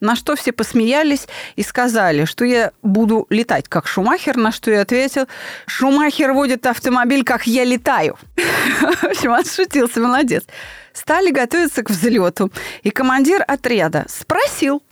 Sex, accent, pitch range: female, native, 205-275 Hz